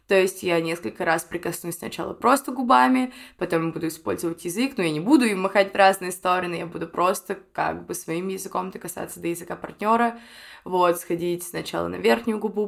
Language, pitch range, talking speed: Russian, 175-220 Hz, 185 wpm